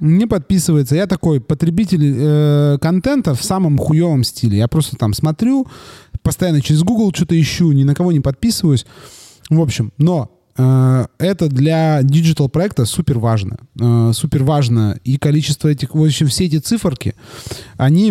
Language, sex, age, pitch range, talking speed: Russian, male, 20-39, 120-160 Hz, 150 wpm